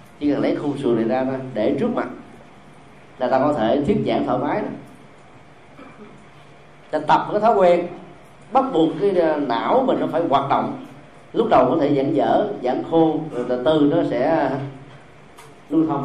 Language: Vietnamese